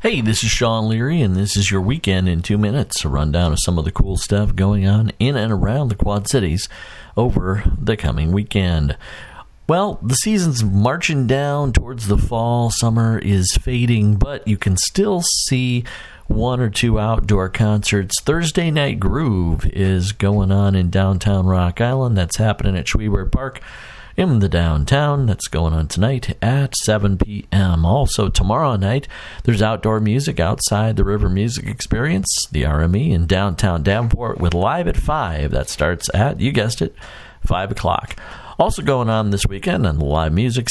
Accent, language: American, English